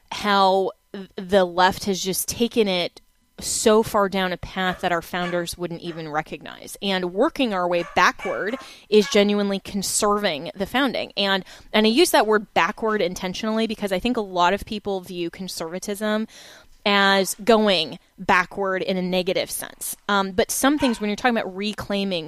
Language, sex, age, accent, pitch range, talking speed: English, female, 20-39, American, 185-215 Hz, 165 wpm